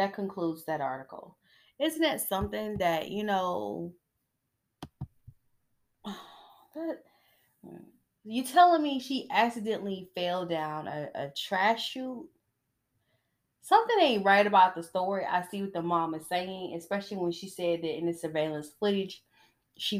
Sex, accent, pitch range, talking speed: female, American, 160-225 Hz, 130 wpm